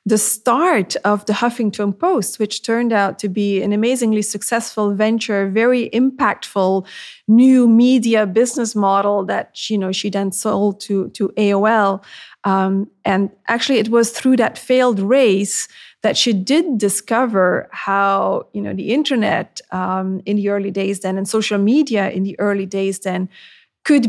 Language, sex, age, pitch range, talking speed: English, female, 30-49, 200-235 Hz, 155 wpm